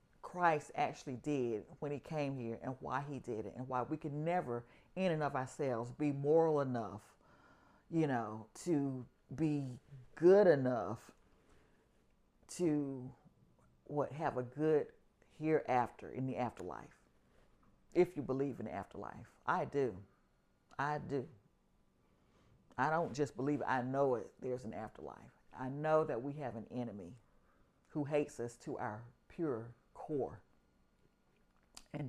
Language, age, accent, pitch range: English, 40-59, American, 125-160 Hz